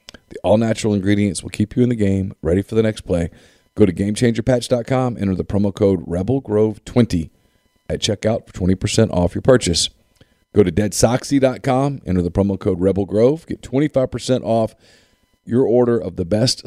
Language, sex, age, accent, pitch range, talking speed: English, male, 40-59, American, 95-115 Hz, 160 wpm